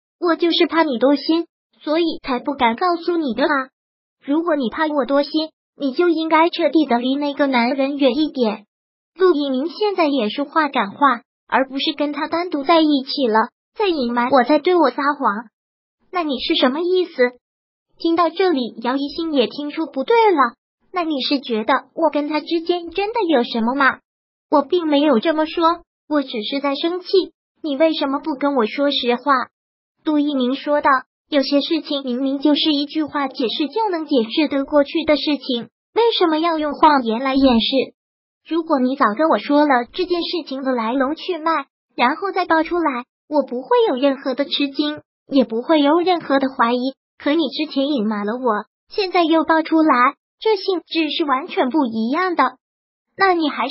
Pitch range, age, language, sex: 260-330 Hz, 30-49, Chinese, male